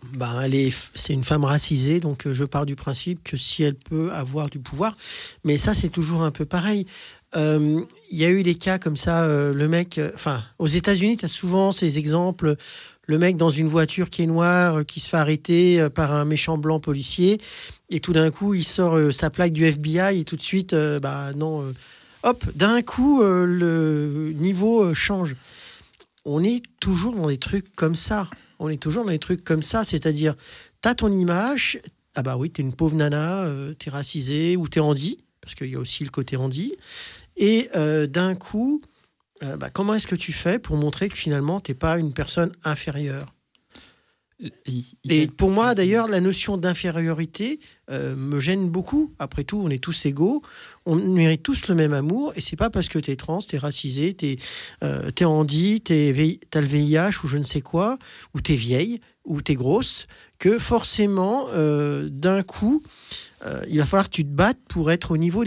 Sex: male